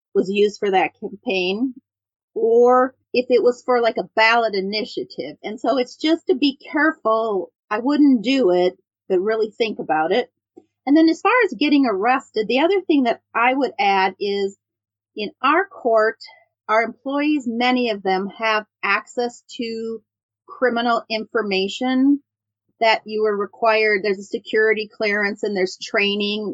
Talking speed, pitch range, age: 155 wpm, 195-260 Hz, 40-59